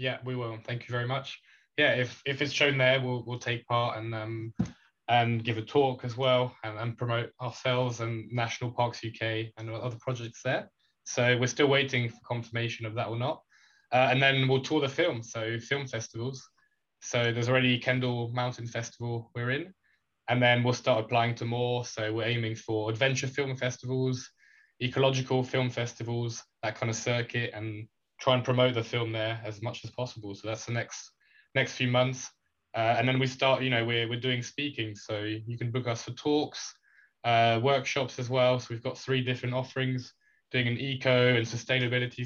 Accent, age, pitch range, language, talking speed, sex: British, 20-39, 115-130 Hz, English, 195 wpm, male